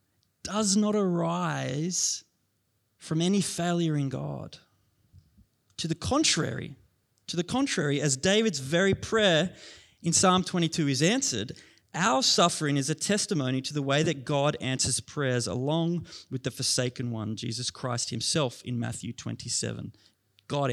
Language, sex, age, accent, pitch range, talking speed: English, male, 20-39, Australian, 120-180 Hz, 135 wpm